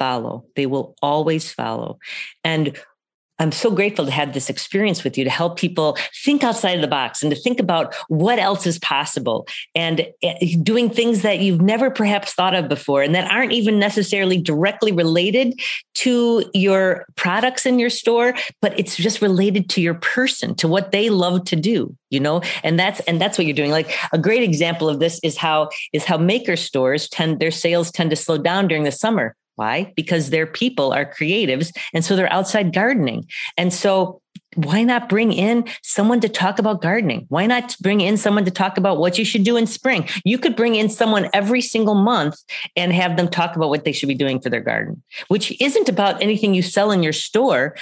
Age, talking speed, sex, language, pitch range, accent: 40-59, 205 wpm, female, English, 160-215 Hz, American